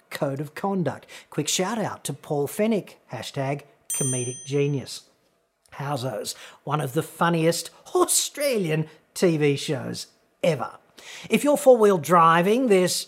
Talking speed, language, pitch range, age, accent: 115 wpm, English, 135-185 Hz, 40-59, Australian